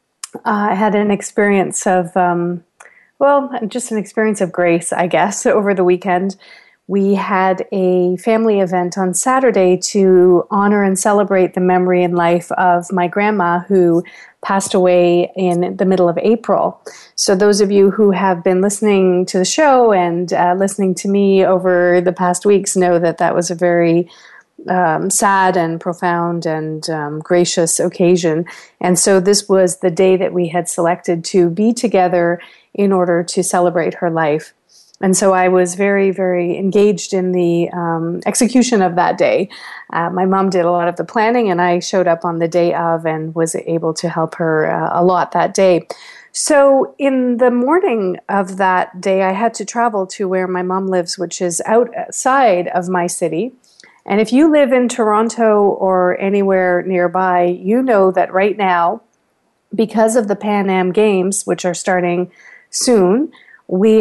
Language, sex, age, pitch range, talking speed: English, female, 30-49, 175-205 Hz, 175 wpm